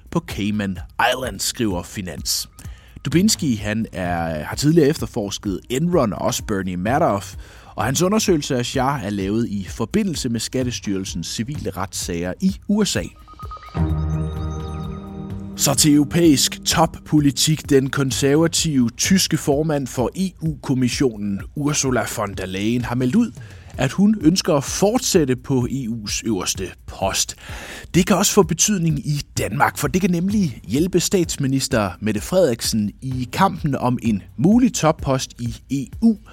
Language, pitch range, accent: Danish, 105-160 Hz, native